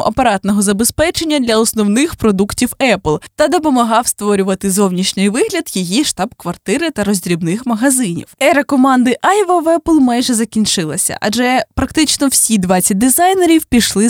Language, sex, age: Ukrainian, female, 20-39